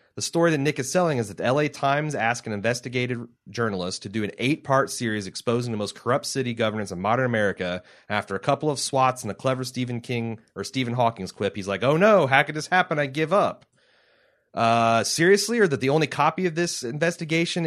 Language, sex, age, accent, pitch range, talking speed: English, male, 30-49, American, 105-140 Hz, 220 wpm